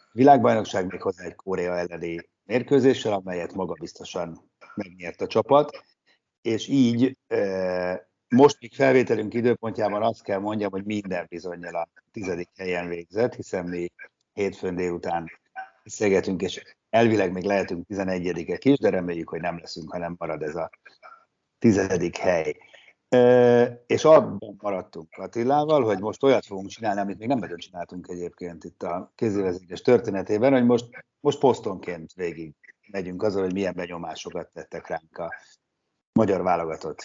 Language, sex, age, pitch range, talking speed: Hungarian, male, 60-79, 90-130 Hz, 135 wpm